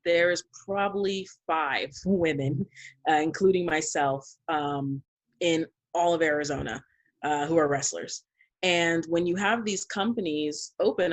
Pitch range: 150-180 Hz